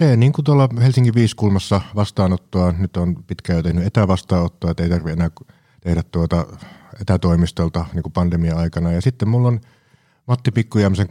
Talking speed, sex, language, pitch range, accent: 150 wpm, male, Finnish, 85-100 Hz, native